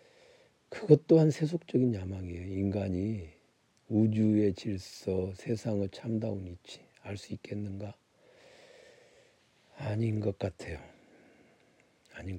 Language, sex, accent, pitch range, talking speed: English, male, Korean, 95-125 Hz, 75 wpm